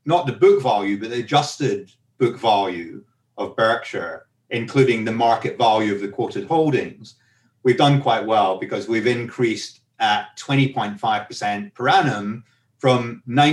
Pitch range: 115-145 Hz